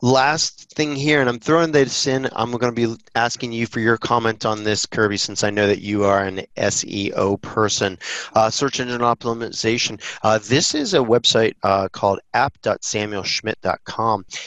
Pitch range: 100-120 Hz